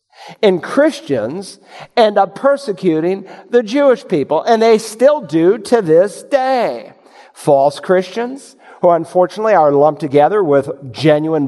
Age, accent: 50-69, American